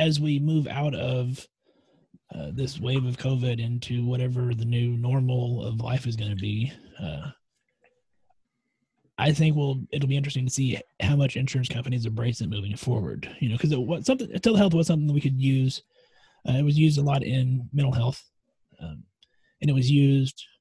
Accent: American